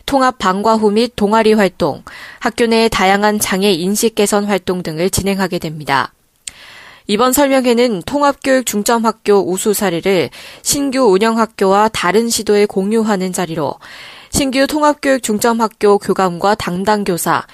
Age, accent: 20-39, native